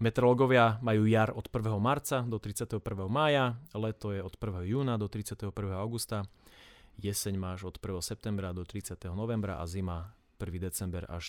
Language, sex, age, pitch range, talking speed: Slovak, male, 30-49, 95-120 Hz, 160 wpm